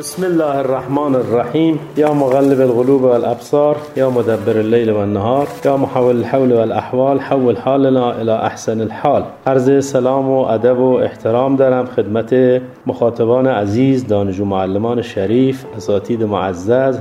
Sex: male